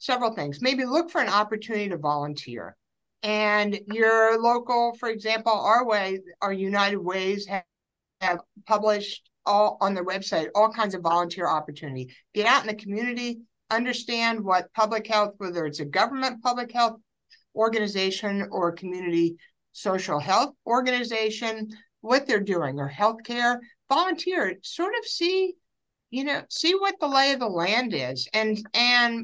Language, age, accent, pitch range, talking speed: English, 60-79, American, 195-245 Hz, 150 wpm